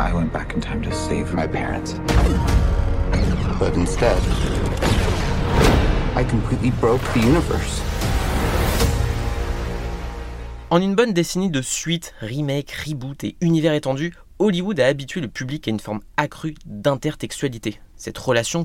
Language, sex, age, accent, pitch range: French, male, 30-49, French, 105-150 Hz